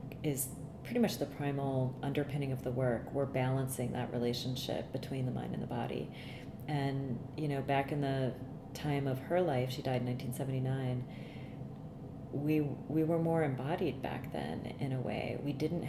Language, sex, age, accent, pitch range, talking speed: English, female, 30-49, American, 130-145 Hz, 170 wpm